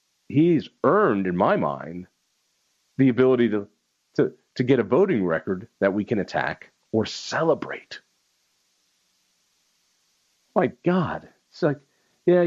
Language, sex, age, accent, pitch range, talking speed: English, male, 50-69, American, 105-170 Hz, 120 wpm